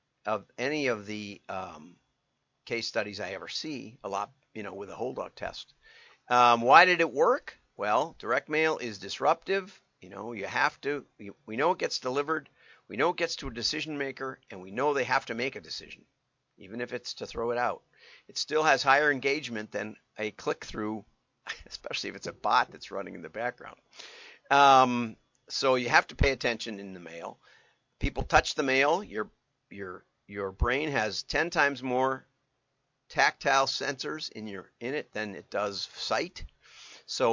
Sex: male